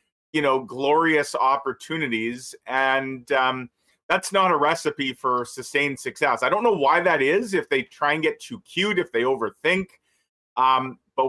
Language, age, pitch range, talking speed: English, 40-59, 130-175 Hz, 165 wpm